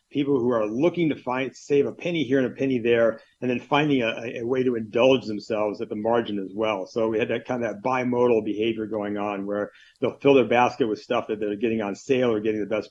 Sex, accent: male, American